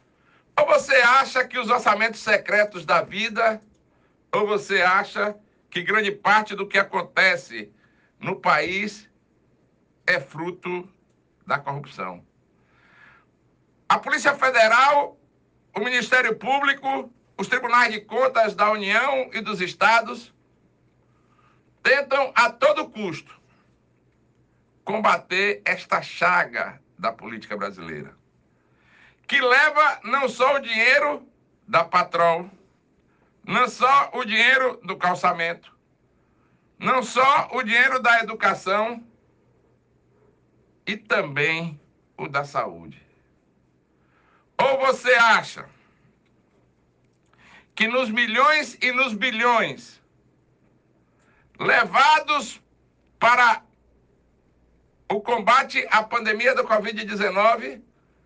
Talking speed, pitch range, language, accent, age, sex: 95 wpm, 180-255 Hz, Portuguese, Brazilian, 60-79, male